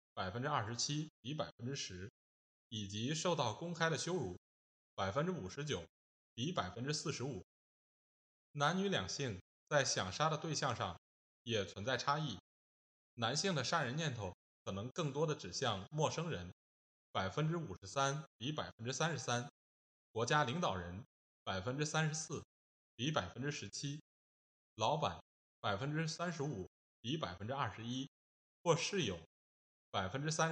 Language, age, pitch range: Chinese, 20-39, 95-150 Hz